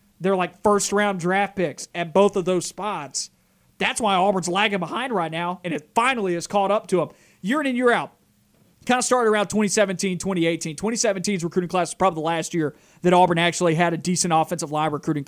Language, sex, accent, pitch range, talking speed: English, male, American, 165-205 Hz, 210 wpm